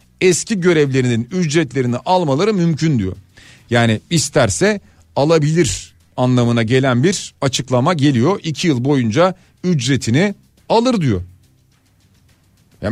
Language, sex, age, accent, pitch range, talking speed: Turkish, male, 40-59, native, 110-150 Hz, 100 wpm